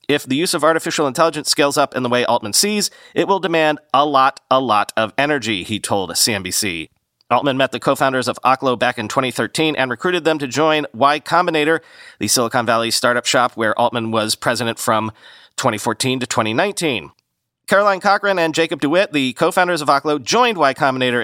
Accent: American